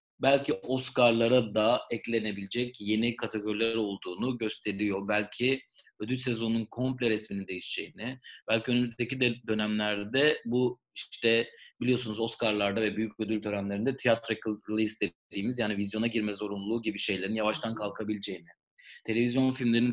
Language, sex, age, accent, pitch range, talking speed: Turkish, male, 30-49, native, 110-130 Hz, 115 wpm